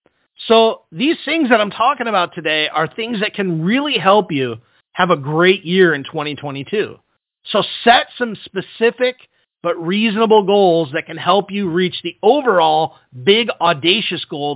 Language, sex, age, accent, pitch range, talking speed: English, male, 40-59, American, 165-225 Hz, 155 wpm